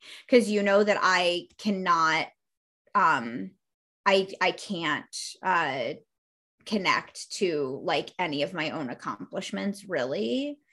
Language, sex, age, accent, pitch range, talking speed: English, female, 20-39, American, 185-230 Hz, 110 wpm